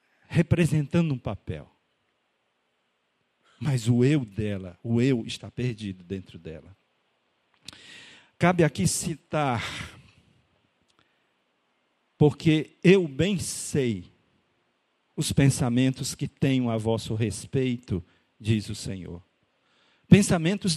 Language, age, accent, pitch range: Portuguese, 50-69, Brazilian, 105-155 Hz